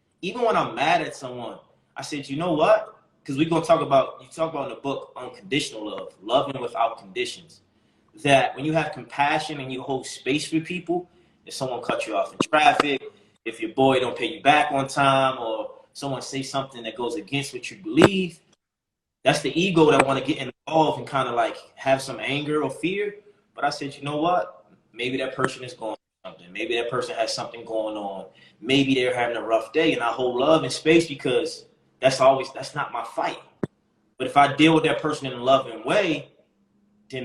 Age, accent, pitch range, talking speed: 20-39, American, 130-165 Hz, 215 wpm